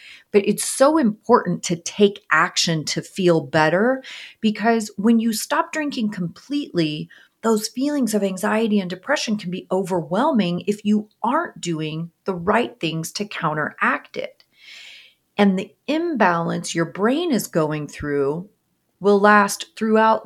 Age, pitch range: 30-49, 165-220 Hz